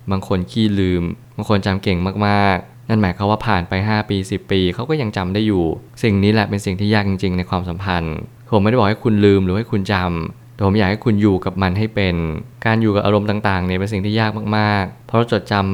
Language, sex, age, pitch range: Thai, male, 20-39, 95-115 Hz